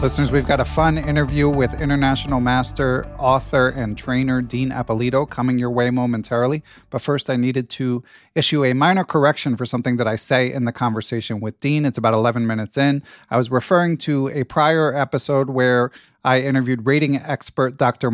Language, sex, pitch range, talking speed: English, male, 115-140 Hz, 180 wpm